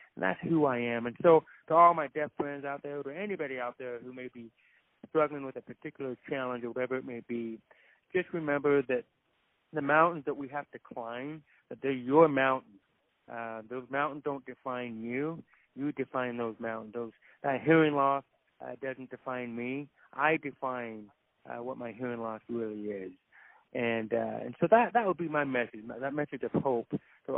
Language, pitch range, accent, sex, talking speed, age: English, 120-140 Hz, American, male, 195 wpm, 30-49